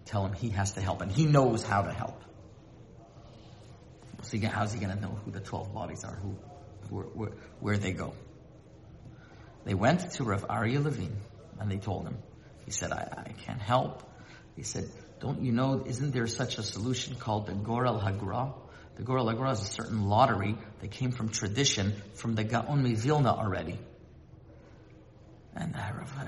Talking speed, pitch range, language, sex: 180 wpm, 105-125 Hz, English, male